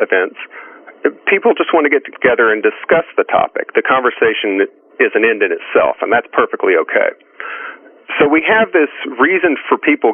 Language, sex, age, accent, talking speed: English, male, 40-59, American, 170 wpm